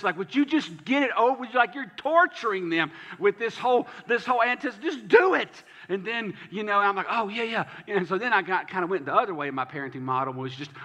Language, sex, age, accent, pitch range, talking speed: English, male, 40-59, American, 135-200 Hz, 270 wpm